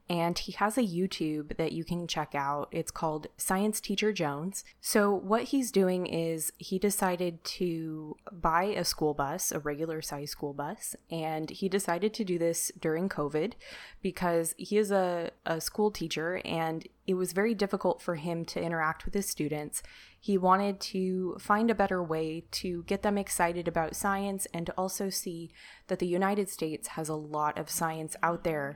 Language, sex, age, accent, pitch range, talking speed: English, female, 20-39, American, 155-185 Hz, 180 wpm